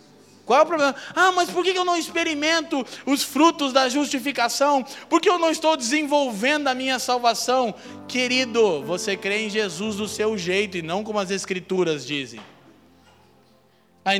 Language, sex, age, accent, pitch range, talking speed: Portuguese, male, 20-39, Brazilian, 185-275 Hz, 165 wpm